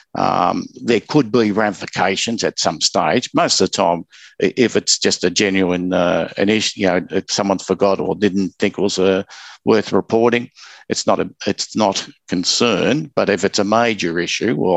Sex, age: male, 60-79